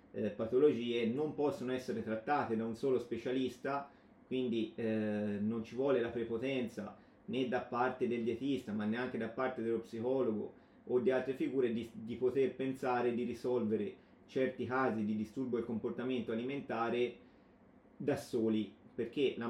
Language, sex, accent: Italian, male, native